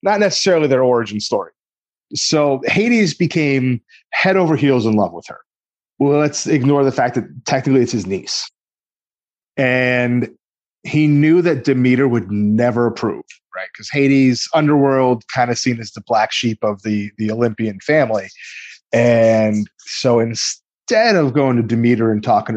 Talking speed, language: 155 wpm, English